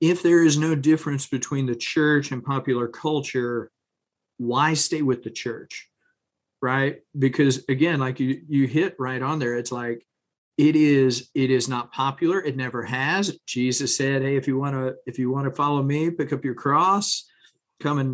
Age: 40-59